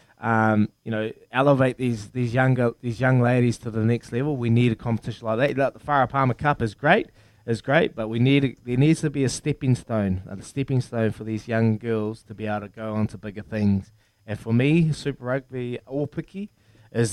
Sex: male